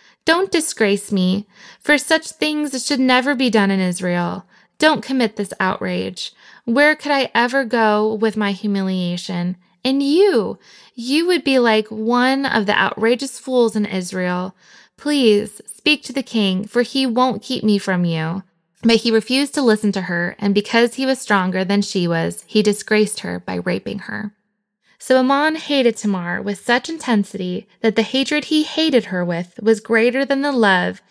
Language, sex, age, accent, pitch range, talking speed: English, female, 20-39, American, 190-255 Hz, 170 wpm